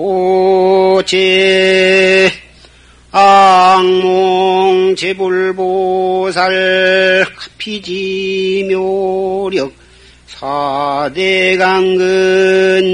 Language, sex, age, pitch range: Korean, male, 50-69, 185-190 Hz